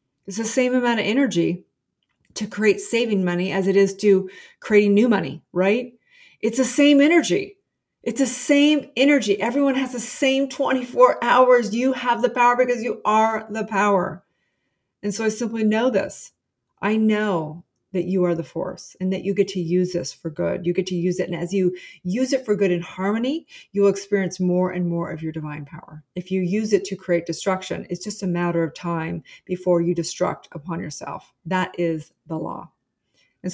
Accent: American